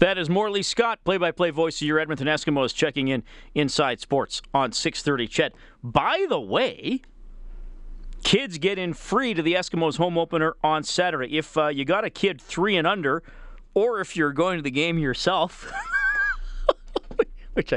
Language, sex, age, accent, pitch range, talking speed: English, male, 40-59, American, 140-190 Hz, 165 wpm